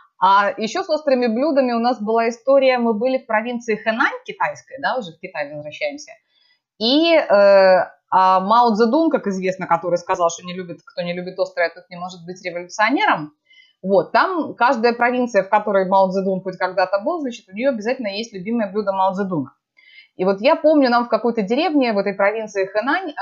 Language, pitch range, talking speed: Russian, 195-275 Hz, 190 wpm